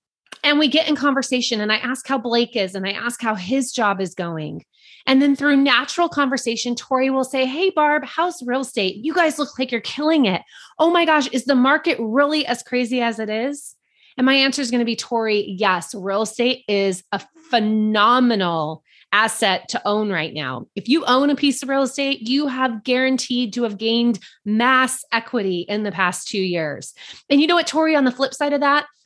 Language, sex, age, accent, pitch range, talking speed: English, female, 20-39, American, 210-280 Hz, 210 wpm